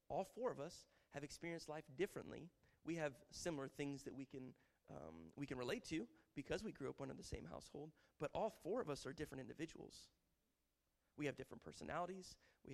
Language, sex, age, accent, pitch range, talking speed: English, male, 30-49, American, 125-150 Hz, 200 wpm